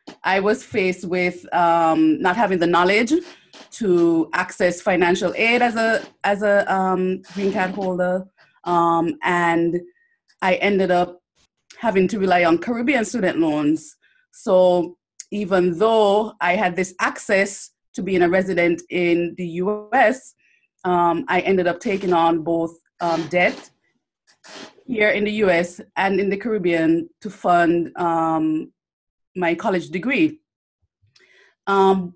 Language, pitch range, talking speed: English, 175-210 Hz, 130 wpm